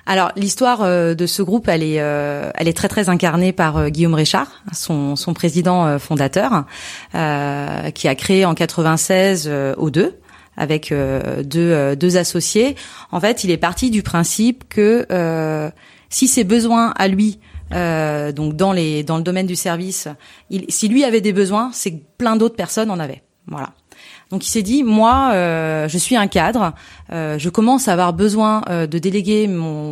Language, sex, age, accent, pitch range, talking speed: French, female, 30-49, French, 160-215 Hz, 180 wpm